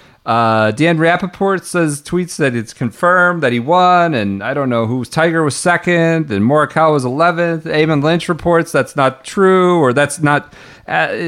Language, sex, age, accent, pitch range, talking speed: English, male, 40-59, American, 140-180 Hz, 175 wpm